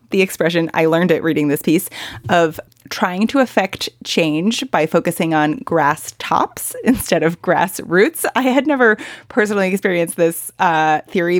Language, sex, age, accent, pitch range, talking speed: English, female, 30-49, American, 155-190 Hz, 160 wpm